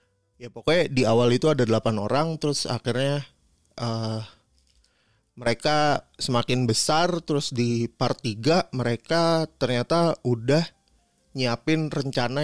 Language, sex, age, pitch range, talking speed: Indonesian, male, 30-49, 115-145 Hz, 110 wpm